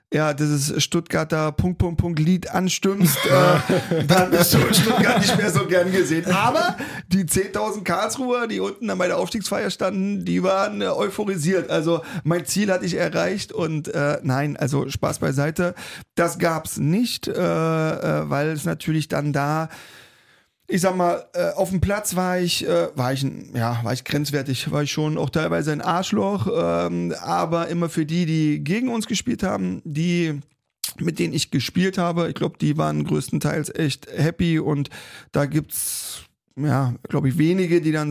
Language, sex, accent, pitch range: German, male, German, 145-180 Hz